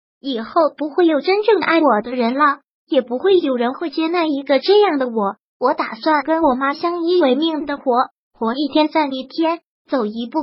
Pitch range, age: 260-320 Hz, 20-39